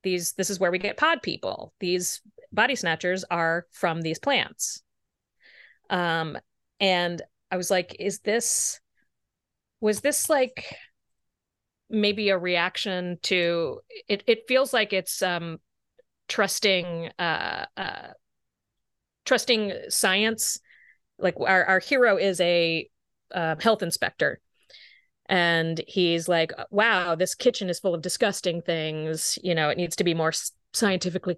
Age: 30-49